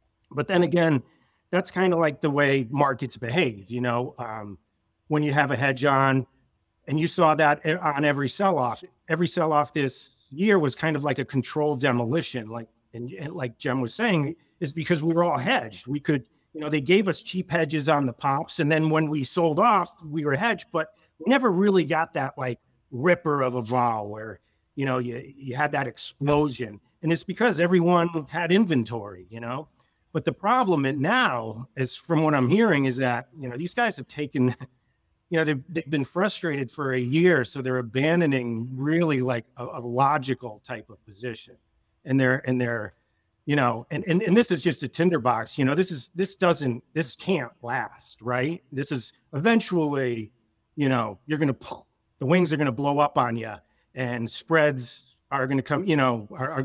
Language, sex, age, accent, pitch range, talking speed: English, male, 40-59, American, 125-160 Hz, 200 wpm